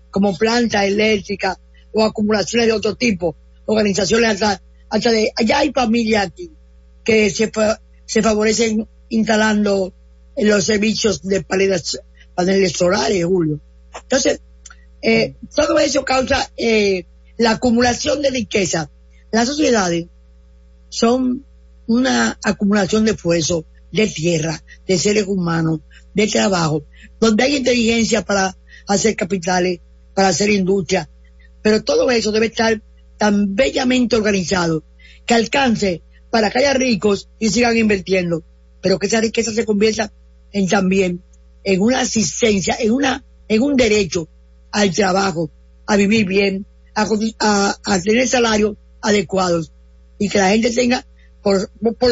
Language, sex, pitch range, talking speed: English, female, 170-225 Hz, 130 wpm